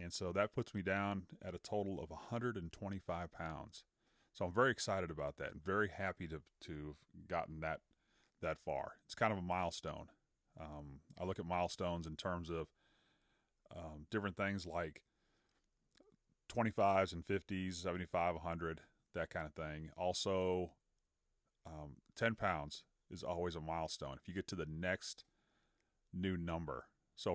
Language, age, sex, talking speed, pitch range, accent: English, 30-49, male, 150 wpm, 80-100 Hz, American